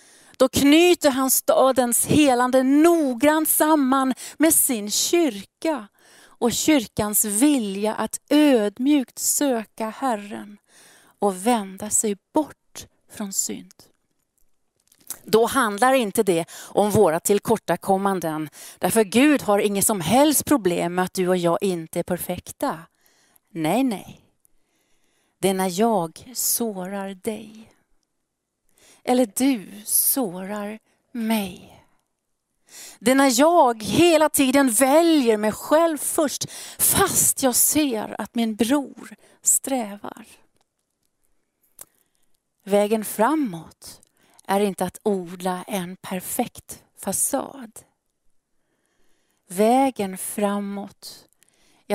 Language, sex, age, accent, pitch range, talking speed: Swedish, female, 40-59, native, 200-265 Hz, 100 wpm